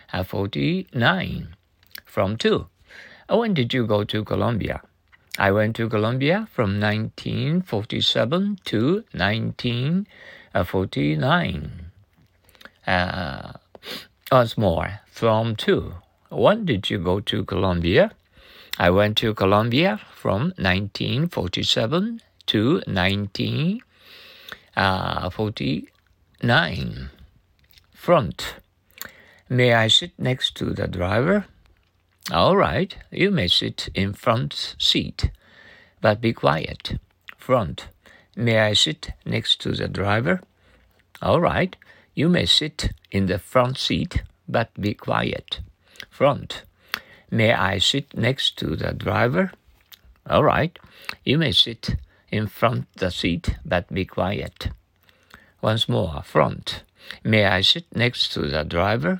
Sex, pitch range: male, 95-125 Hz